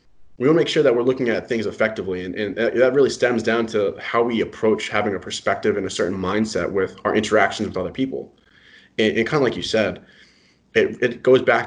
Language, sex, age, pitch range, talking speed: English, male, 20-39, 105-130 Hz, 230 wpm